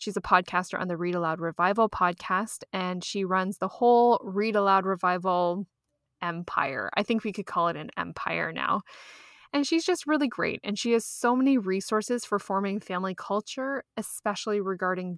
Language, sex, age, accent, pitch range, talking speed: English, female, 20-39, American, 180-225 Hz, 175 wpm